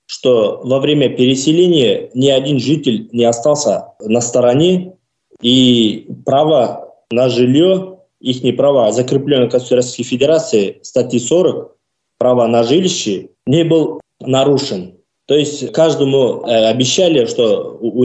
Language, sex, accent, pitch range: Russian, male, native, 120-165 Hz